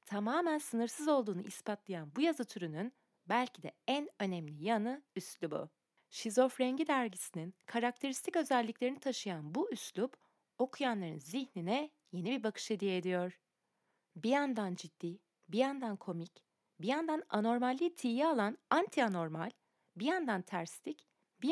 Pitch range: 185-280 Hz